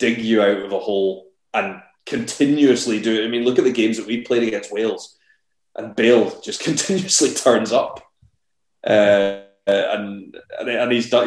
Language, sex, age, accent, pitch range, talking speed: English, male, 20-39, British, 95-120 Hz, 170 wpm